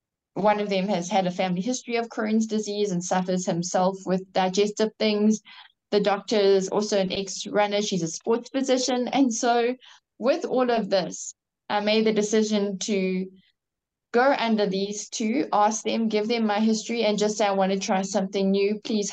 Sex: female